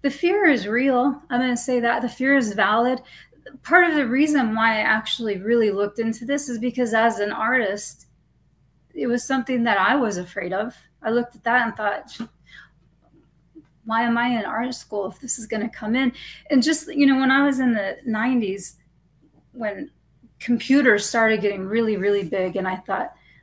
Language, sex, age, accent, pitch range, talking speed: English, female, 30-49, American, 205-250 Hz, 195 wpm